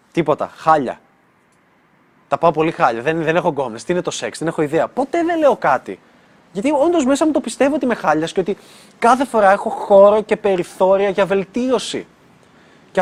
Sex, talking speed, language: male, 190 wpm, Greek